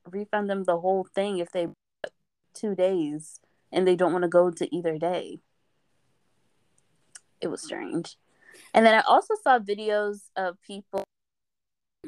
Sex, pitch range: female, 165-200 Hz